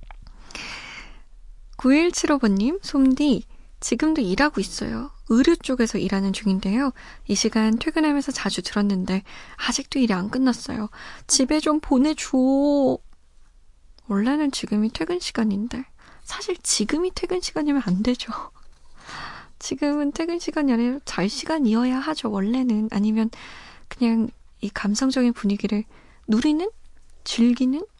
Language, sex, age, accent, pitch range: Korean, female, 20-39, native, 205-270 Hz